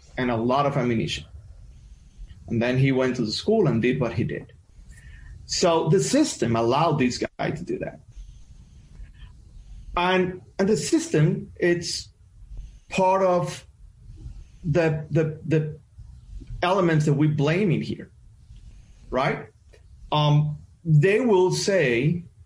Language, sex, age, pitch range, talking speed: English, male, 40-59, 115-170 Hz, 120 wpm